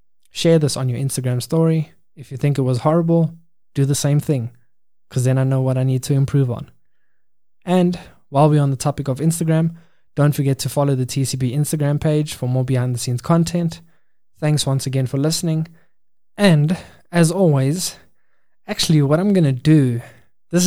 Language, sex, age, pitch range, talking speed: English, male, 20-39, 130-155 Hz, 175 wpm